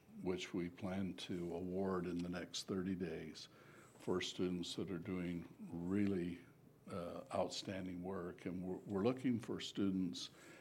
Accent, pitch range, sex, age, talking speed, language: American, 90-100 Hz, male, 60-79, 140 wpm, English